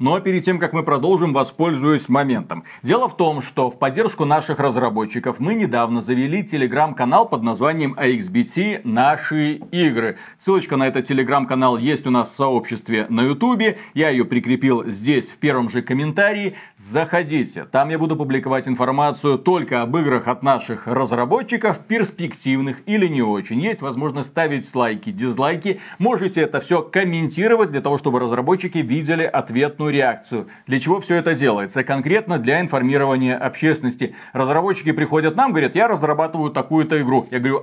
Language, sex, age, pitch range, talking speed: Russian, male, 40-59, 130-180 Hz, 150 wpm